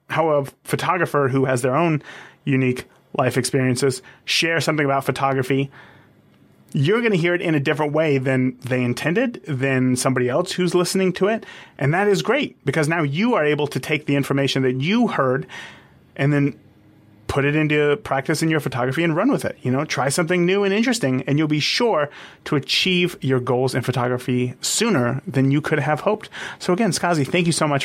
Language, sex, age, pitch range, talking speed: English, male, 30-49, 130-170 Hz, 200 wpm